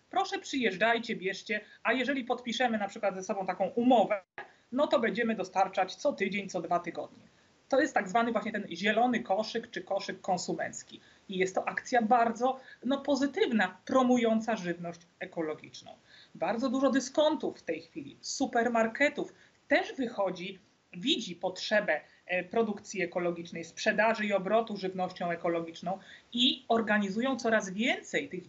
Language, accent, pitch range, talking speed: Polish, native, 185-255 Hz, 135 wpm